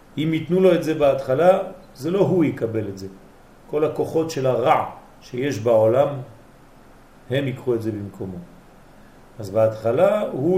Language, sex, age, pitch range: French, male, 40-59, 110-150 Hz